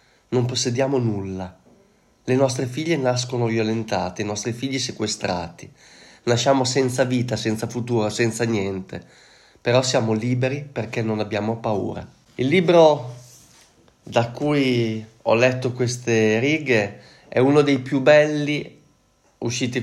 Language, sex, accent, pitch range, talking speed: Italian, male, native, 115-145 Hz, 120 wpm